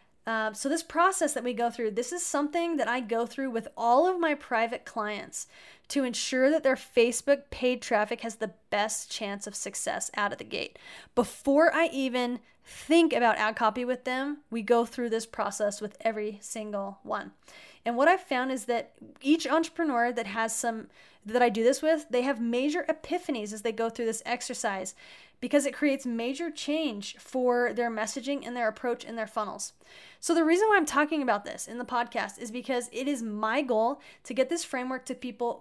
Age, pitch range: 10-29, 225-280 Hz